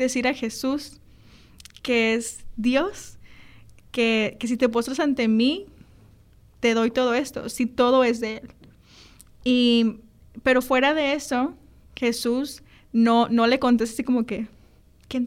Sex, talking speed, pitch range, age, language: female, 140 wpm, 225-255 Hz, 20-39, Spanish